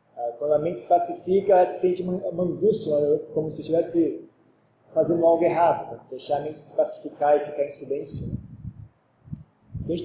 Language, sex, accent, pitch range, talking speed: Portuguese, male, Brazilian, 140-180 Hz, 180 wpm